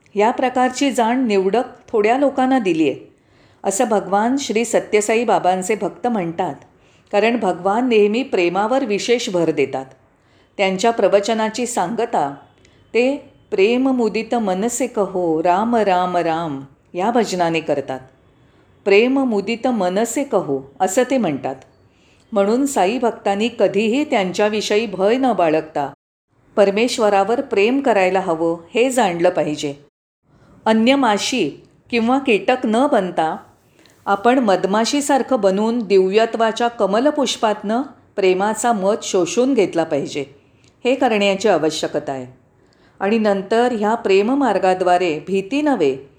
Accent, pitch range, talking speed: native, 180-240 Hz, 105 wpm